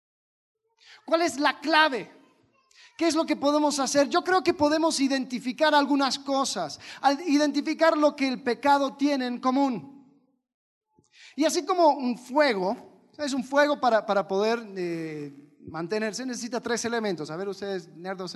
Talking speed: 145 wpm